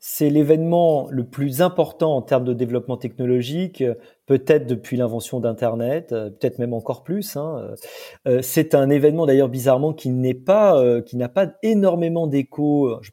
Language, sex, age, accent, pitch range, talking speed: French, male, 30-49, French, 125-170 Hz, 145 wpm